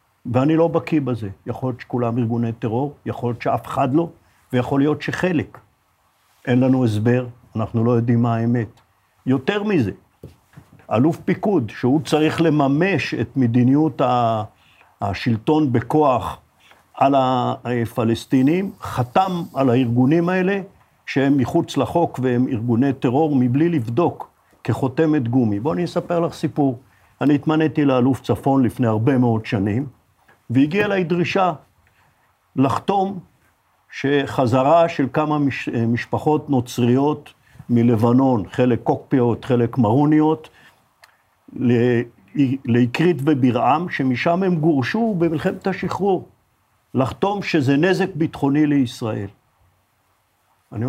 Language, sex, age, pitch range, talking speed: Hebrew, male, 50-69, 120-160 Hz, 110 wpm